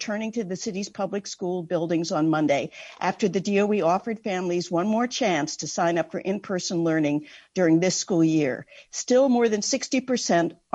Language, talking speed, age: English, 175 wpm, 50-69